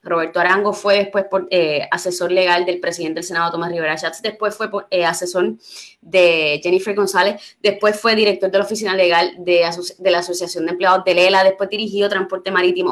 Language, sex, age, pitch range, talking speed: Spanish, female, 20-39, 180-255 Hz, 200 wpm